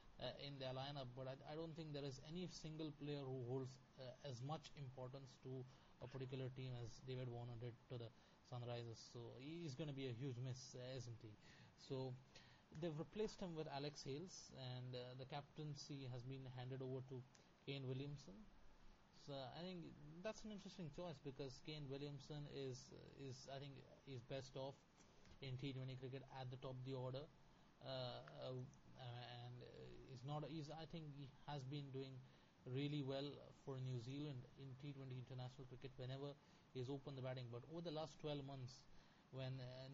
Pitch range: 130-145 Hz